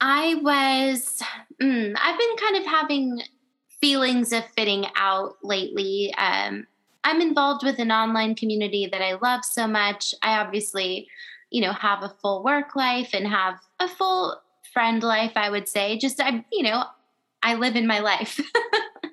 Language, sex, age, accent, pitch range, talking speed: English, female, 20-39, American, 195-260 Hz, 165 wpm